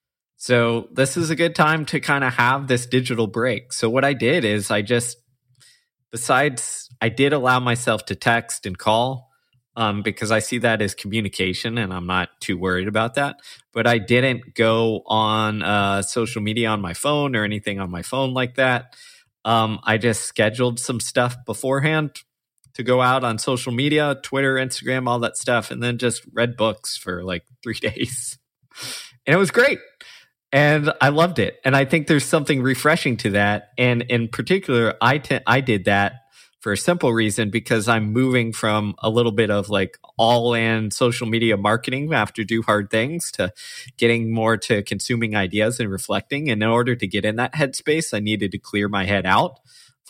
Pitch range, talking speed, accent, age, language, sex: 110-130 Hz, 190 wpm, American, 20-39, English, male